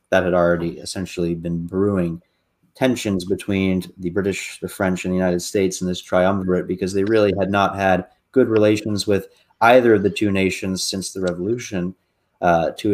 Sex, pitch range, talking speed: male, 95-110 Hz, 175 wpm